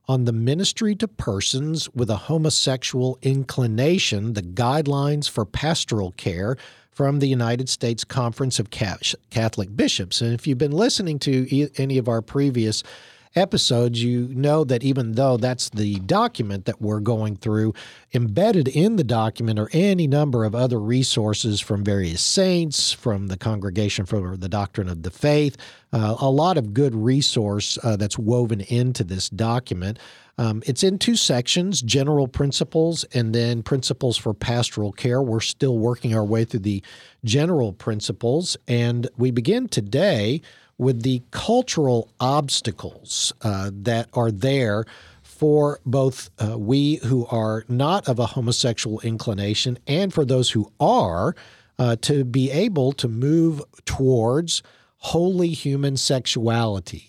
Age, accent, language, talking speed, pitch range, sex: 50-69, American, English, 145 wpm, 110-140 Hz, male